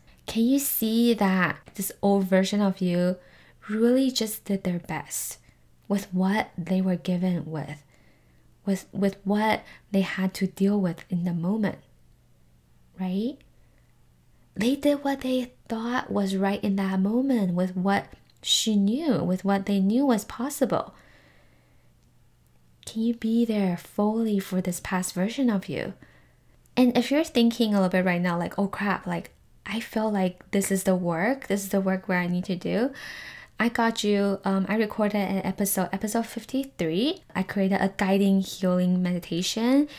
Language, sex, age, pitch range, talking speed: English, female, 10-29, 180-215 Hz, 160 wpm